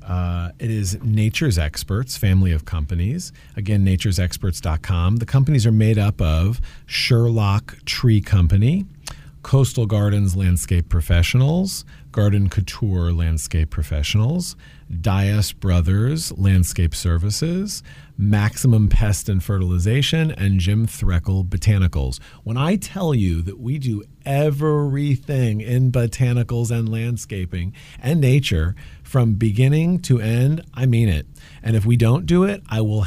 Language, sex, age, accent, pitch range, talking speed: English, male, 40-59, American, 95-125 Hz, 125 wpm